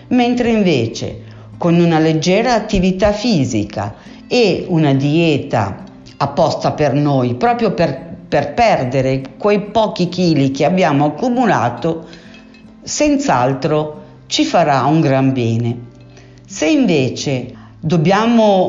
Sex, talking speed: female, 105 wpm